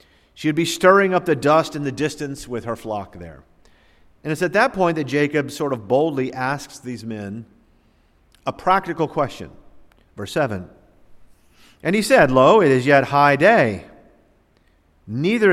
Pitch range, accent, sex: 110-165 Hz, American, male